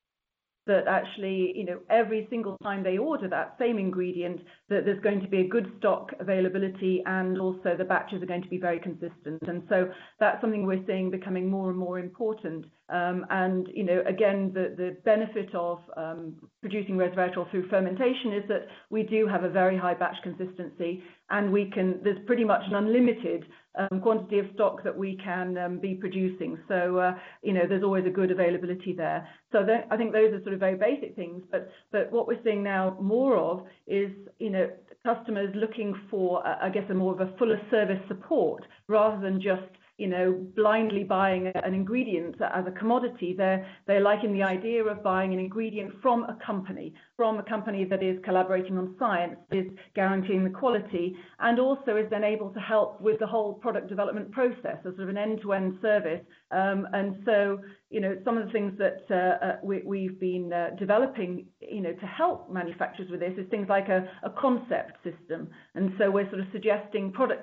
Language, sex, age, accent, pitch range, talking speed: English, female, 40-59, British, 185-215 Hz, 200 wpm